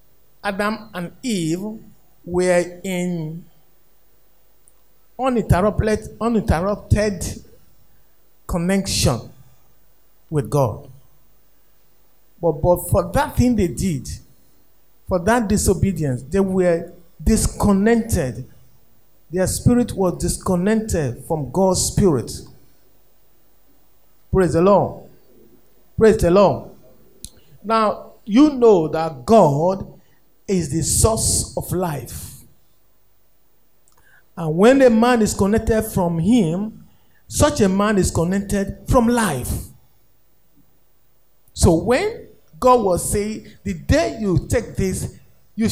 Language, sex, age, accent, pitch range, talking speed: English, male, 50-69, Nigerian, 160-215 Hz, 95 wpm